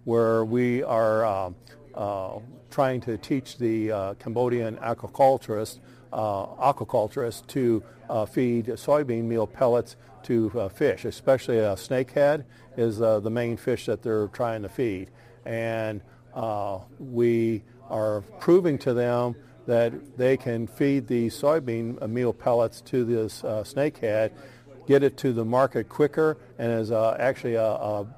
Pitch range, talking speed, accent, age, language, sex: 110-125 Hz, 145 wpm, American, 50-69, English, male